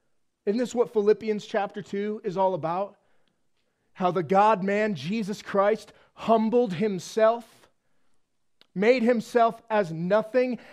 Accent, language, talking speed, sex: American, English, 110 wpm, male